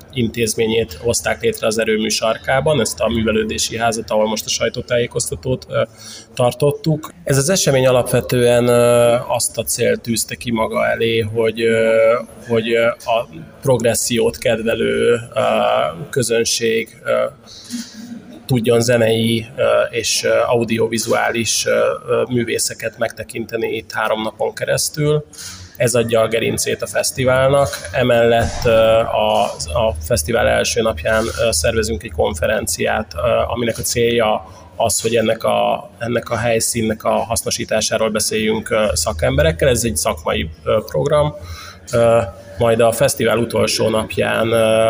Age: 20-39